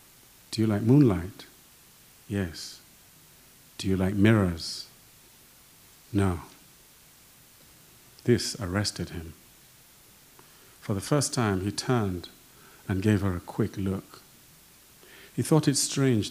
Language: English